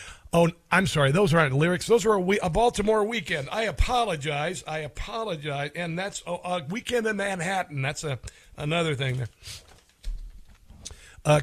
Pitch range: 130-175 Hz